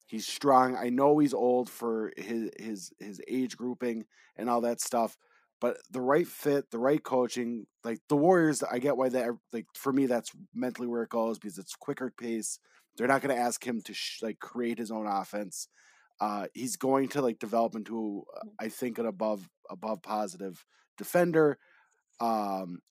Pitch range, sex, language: 115-145 Hz, male, English